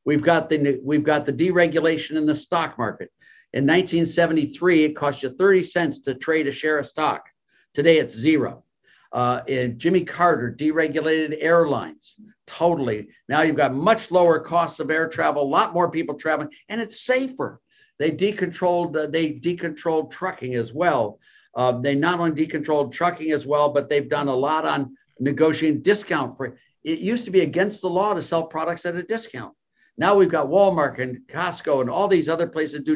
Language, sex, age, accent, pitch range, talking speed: English, male, 60-79, American, 150-185 Hz, 185 wpm